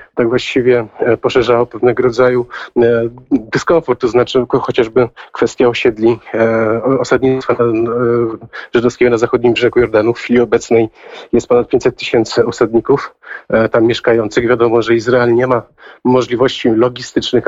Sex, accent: male, native